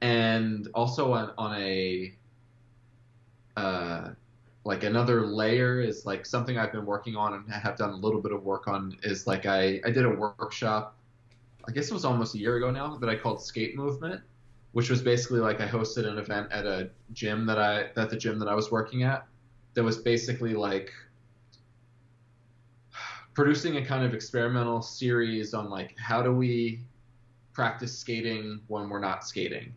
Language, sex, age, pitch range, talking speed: English, male, 20-39, 105-120 Hz, 185 wpm